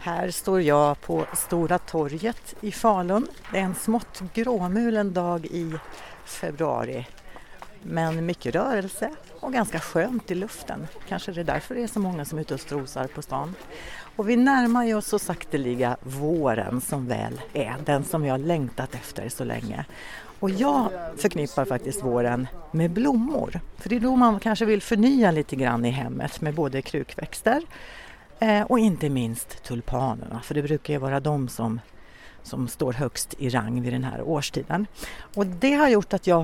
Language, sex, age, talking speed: Swedish, female, 60-79, 170 wpm